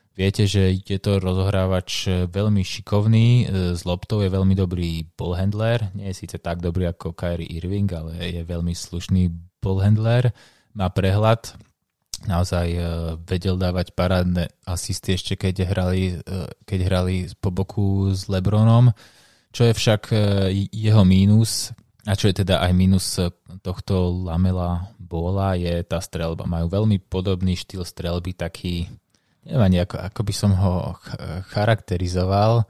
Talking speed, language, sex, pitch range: 145 wpm, Slovak, male, 90-100 Hz